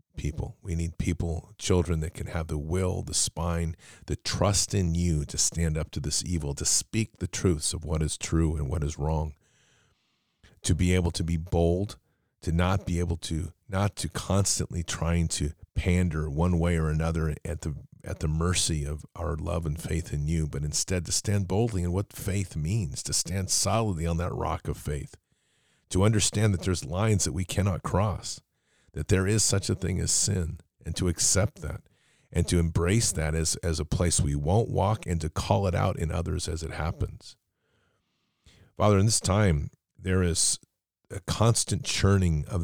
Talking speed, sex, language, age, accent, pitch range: 190 wpm, male, English, 40-59, American, 80-100 Hz